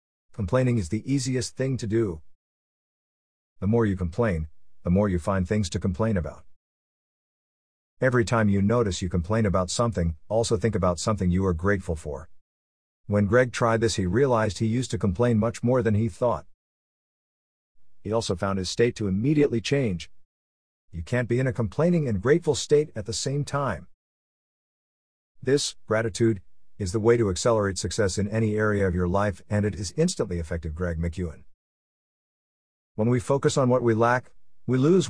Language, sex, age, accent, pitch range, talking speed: English, male, 50-69, American, 85-120 Hz, 175 wpm